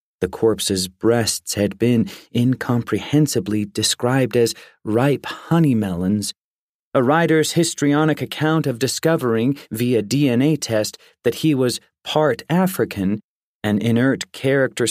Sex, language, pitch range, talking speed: male, English, 110-150 Hz, 110 wpm